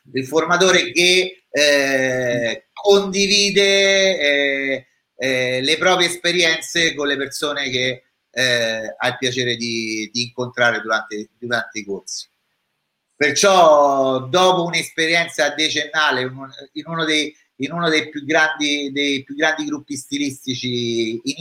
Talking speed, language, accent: 120 wpm, Italian, native